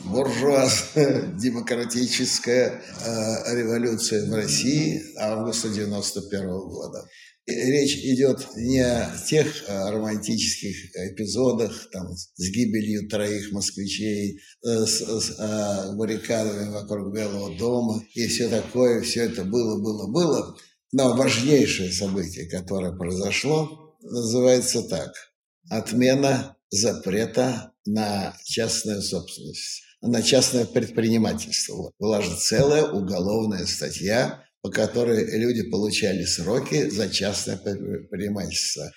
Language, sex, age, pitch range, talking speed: Russian, male, 60-79, 105-125 Hz, 105 wpm